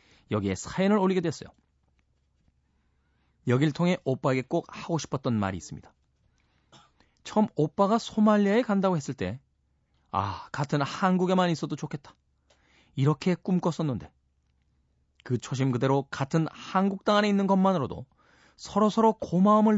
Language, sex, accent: Korean, male, native